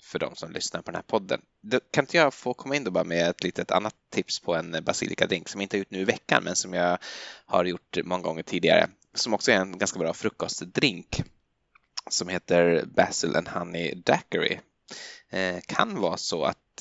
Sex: male